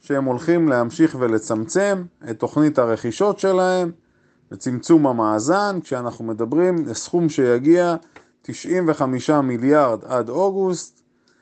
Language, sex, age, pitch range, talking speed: Hebrew, male, 30-49, 120-165 Hz, 95 wpm